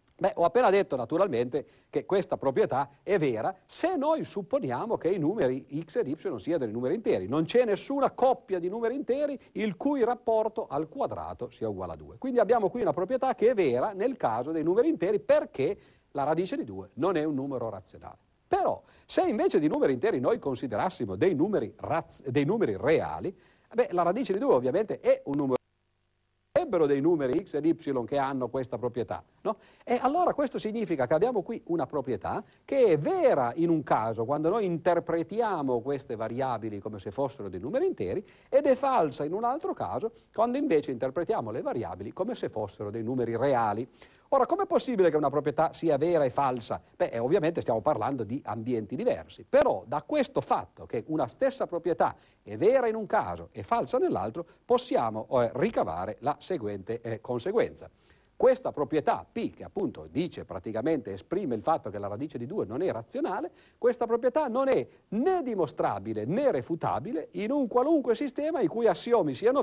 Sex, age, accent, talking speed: male, 50-69, native, 185 wpm